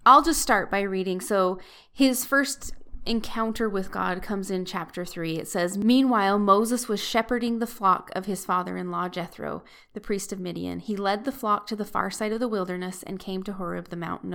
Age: 20-39